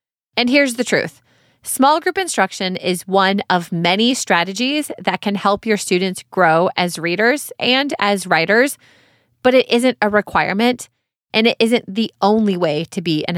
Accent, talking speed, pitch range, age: American, 165 wpm, 175-225 Hz, 30-49